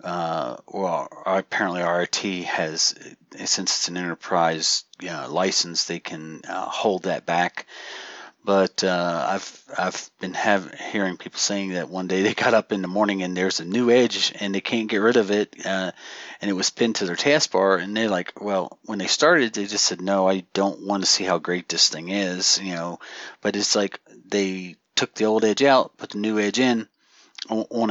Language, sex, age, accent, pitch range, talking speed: English, male, 40-59, American, 95-115 Hz, 200 wpm